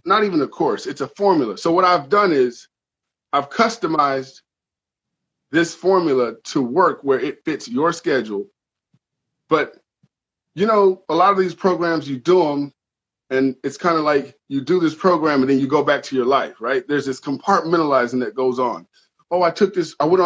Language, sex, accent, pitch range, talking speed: English, male, American, 140-195 Hz, 190 wpm